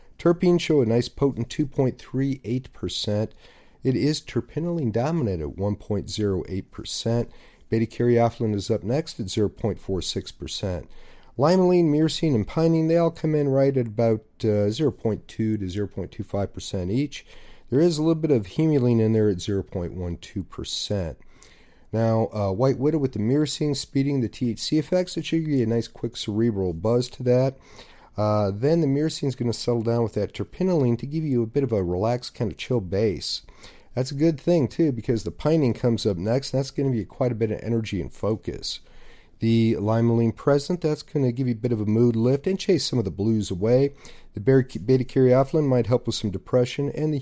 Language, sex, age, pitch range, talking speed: English, male, 40-59, 105-140 Hz, 185 wpm